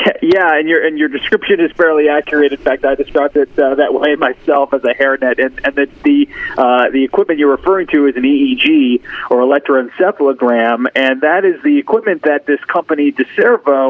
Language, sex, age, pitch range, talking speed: English, male, 40-59, 135-180 Hz, 195 wpm